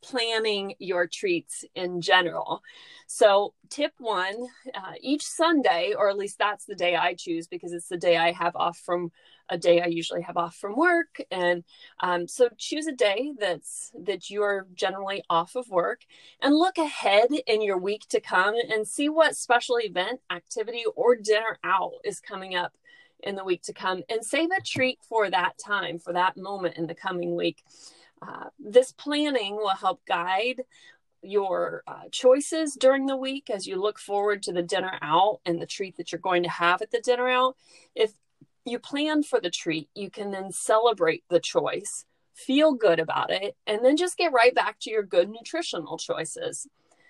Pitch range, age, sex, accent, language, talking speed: 180-260 Hz, 30-49, female, American, English, 185 wpm